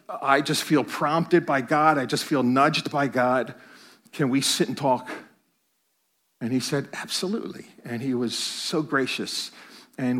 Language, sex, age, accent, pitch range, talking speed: English, male, 50-69, American, 135-190 Hz, 160 wpm